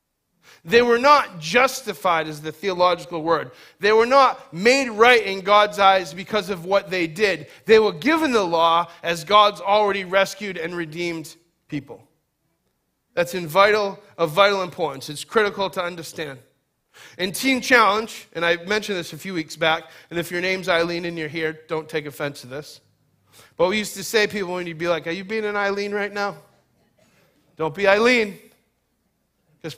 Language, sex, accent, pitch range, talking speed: English, male, American, 160-205 Hz, 175 wpm